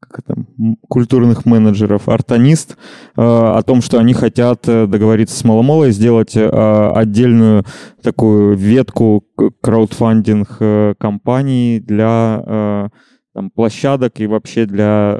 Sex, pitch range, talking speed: male, 105-120 Hz, 90 wpm